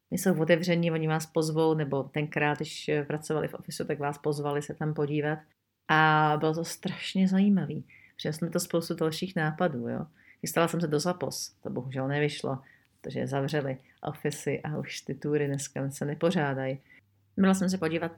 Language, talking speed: Czech, 170 wpm